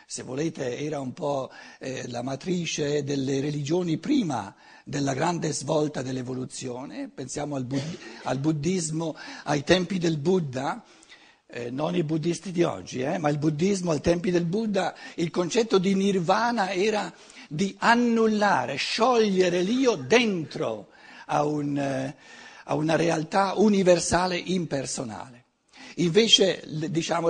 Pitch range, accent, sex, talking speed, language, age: 150-215 Hz, native, male, 125 wpm, Italian, 60-79